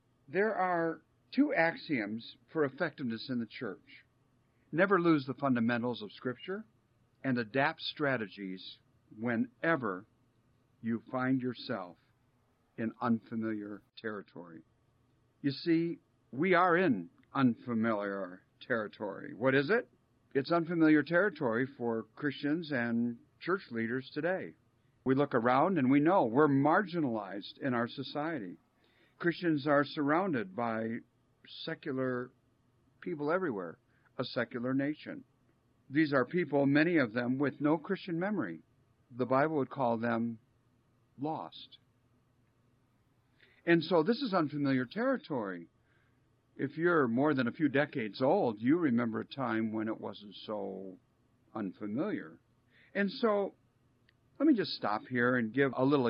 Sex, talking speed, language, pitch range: male, 125 wpm, English, 120-145 Hz